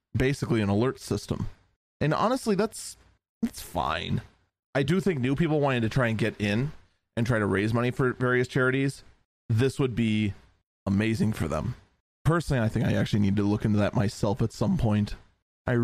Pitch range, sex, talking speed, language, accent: 105-135 Hz, male, 185 wpm, English, American